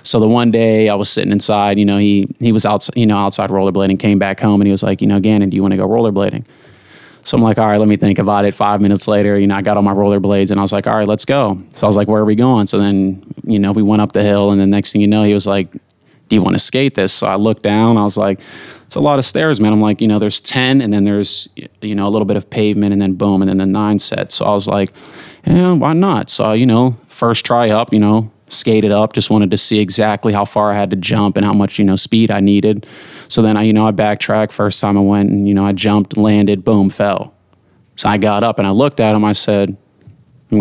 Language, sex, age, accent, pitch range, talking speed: English, male, 20-39, American, 100-110 Hz, 295 wpm